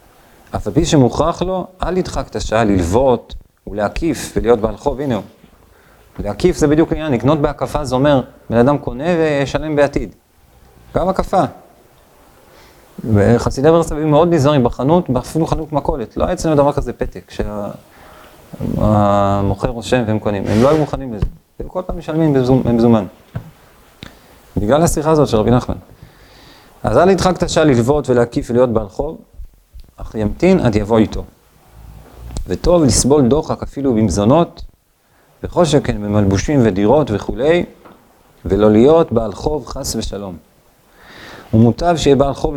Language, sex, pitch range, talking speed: Hebrew, male, 105-145 Hz, 135 wpm